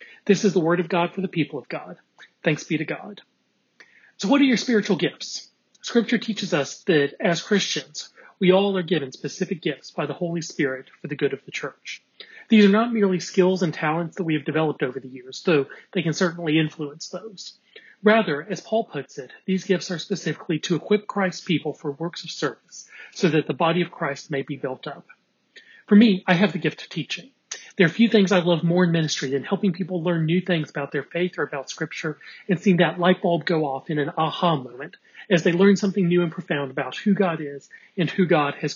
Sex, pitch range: male, 155-195 Hz